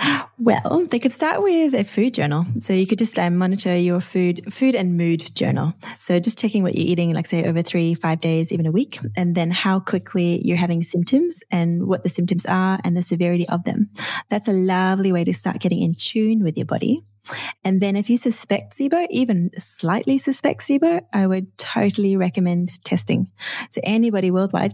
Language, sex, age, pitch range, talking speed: English, female, 20-39, 175-205 Hz, 200 wpm